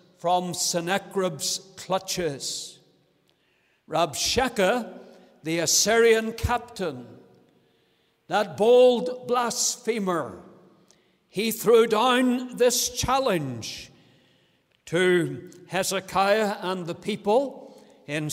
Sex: male